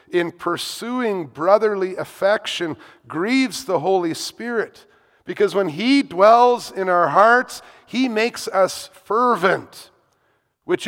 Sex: male